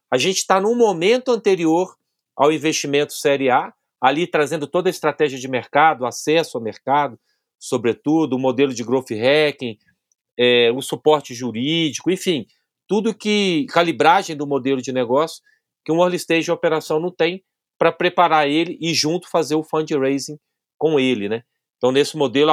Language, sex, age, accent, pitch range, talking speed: Portuguese, male, 40-59, Brazilian, 130-165 Hz, 160 wpm